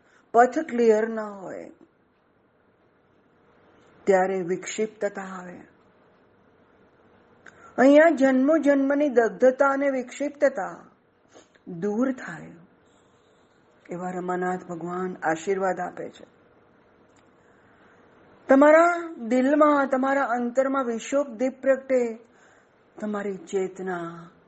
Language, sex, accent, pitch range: Gujarati, female, native, 195-270 Hz